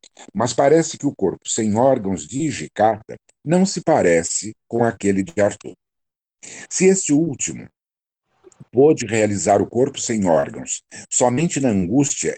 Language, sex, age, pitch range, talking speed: Portuguese, male, 60-79, 100-140 Hz, 135 wpm